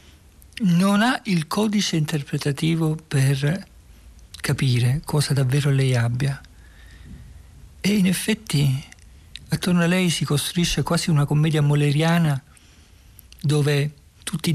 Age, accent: 50-69, native